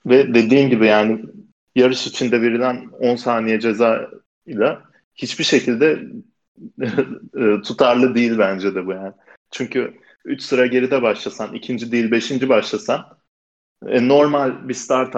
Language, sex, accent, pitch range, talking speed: Turkish, male, native, 105-130 Hz, 125 wpm